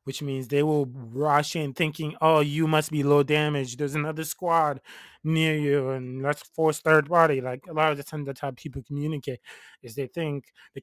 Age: 20-39